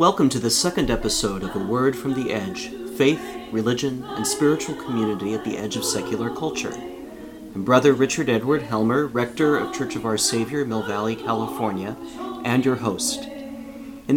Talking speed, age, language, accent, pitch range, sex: 170 wpm, 40-59, English, American, 115-145 Hz, male